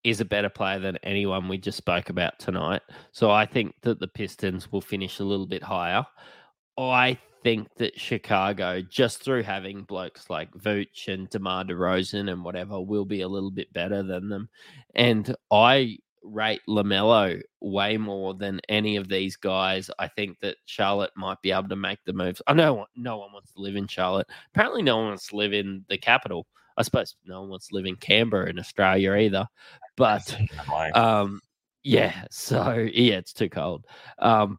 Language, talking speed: English, 185 wpm